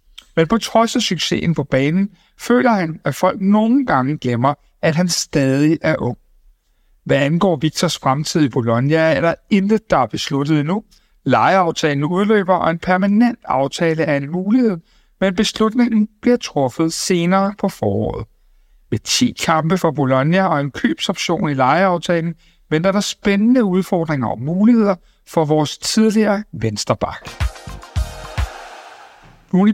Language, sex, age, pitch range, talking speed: Danish, male, 60-79, 140-200 Hz, 140 wpm